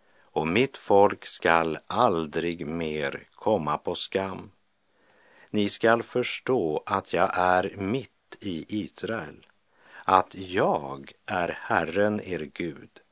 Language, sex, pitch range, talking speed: English, male, 80-105 Hz, 110 wpm